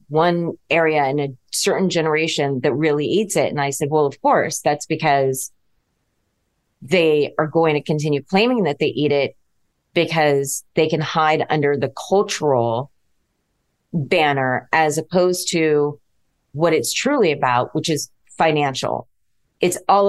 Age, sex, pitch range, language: 30-49, female, 140-165 Hz, English